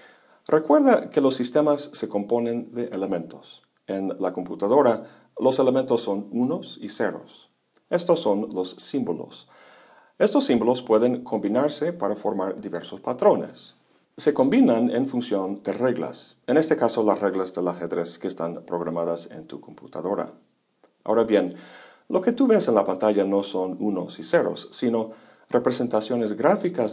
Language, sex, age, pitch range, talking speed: Spanish, male, 50-69, 95-130 Hz, 145 wpm